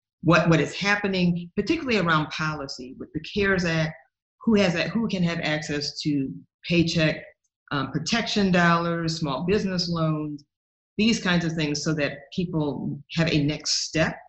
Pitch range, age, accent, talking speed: 145-175 Hz, 50-69, American, 155 wpm